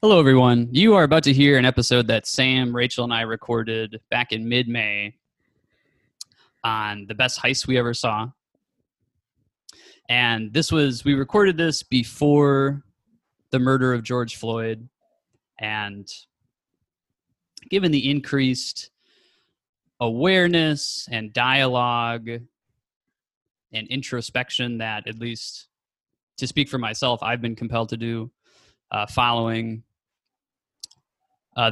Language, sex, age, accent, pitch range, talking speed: English, male, 20-39, American, 115-140 Hz, 115 wpm